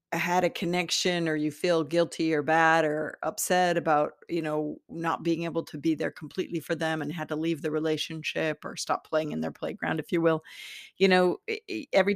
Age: 50-69